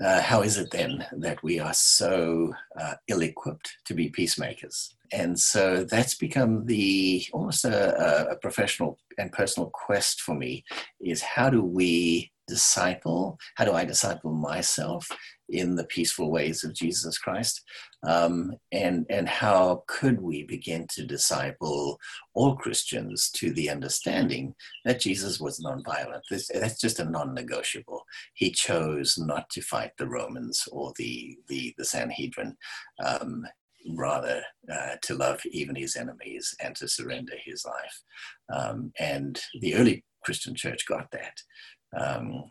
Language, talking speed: English, 140 wpm